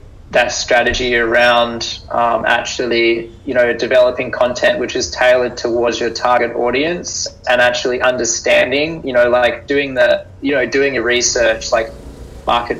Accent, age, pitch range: Australian, 20-39, 115-135 Hz